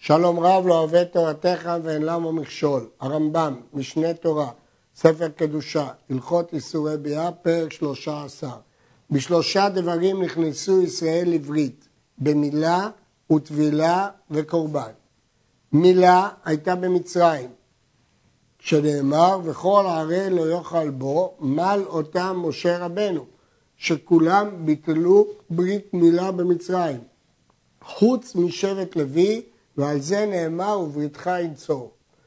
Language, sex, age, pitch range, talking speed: Hebrew, male, 50-69, 150-190 Hz, 100 wpm